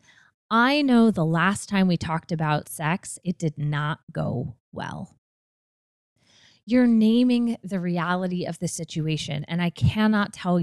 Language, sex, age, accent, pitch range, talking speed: English, female, 20-39, American, 155-205 Hz, 140 wpm